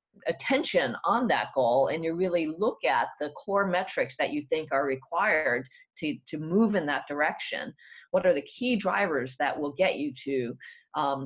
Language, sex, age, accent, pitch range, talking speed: English, female, 30-49, American, 150-215 Hz, 180 wpm